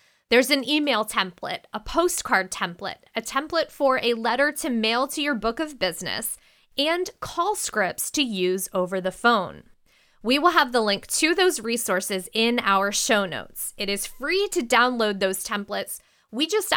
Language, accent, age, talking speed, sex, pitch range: English, American, 20-39, 170 wpm, female, 200-275 Hz